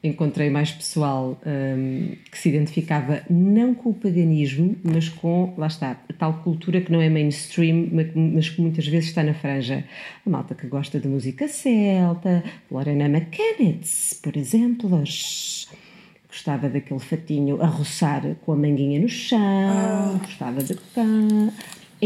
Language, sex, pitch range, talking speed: Portuguese, female, 140-175 Hz, 145 wpm